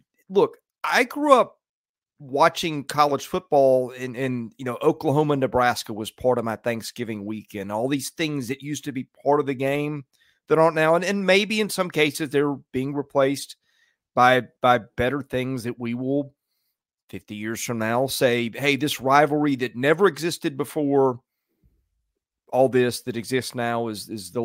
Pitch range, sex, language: 120-160 Hz, male, English